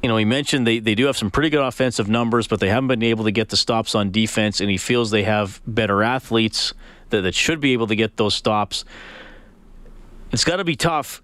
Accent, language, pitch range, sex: American, English, 105-125 Hz, male